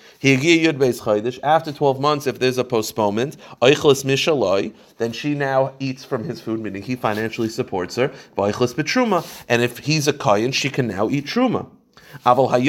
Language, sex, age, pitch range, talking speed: English, male, 30-49, 105-135 Hz, 135 wpm